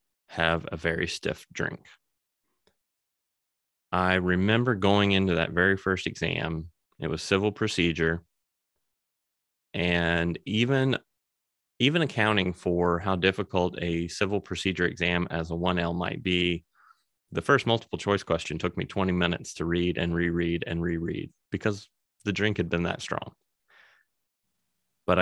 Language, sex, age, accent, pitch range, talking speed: English, male, 30-49, American, 85-100 Hz, 135 wpm